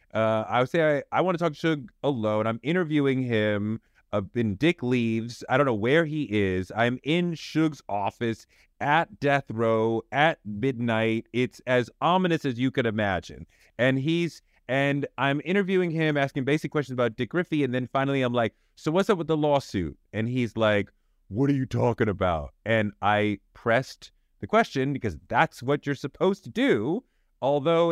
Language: English